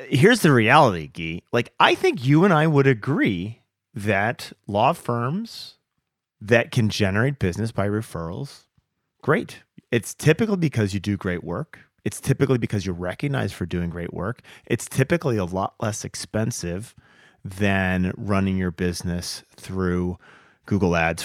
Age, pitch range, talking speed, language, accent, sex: 30-49, 90-115 Hz, 145 wpm, English, American, male